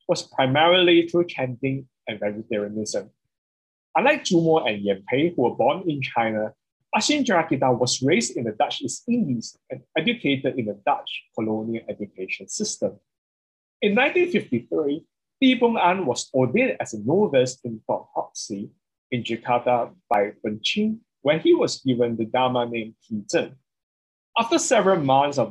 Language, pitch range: Indonesian, 115-170 Hz